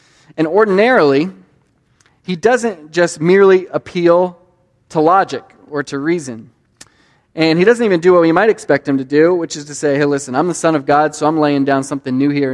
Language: English